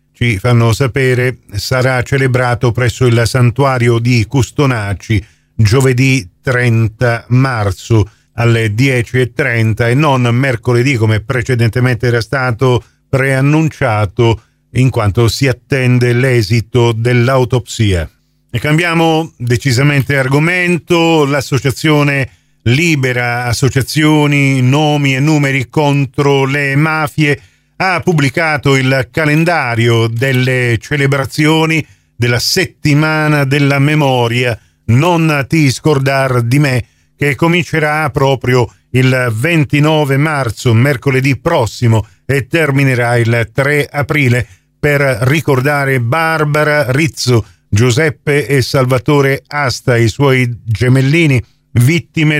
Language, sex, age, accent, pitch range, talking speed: Italian, male, 40-59, native, 120-145 Hz, 95 wpm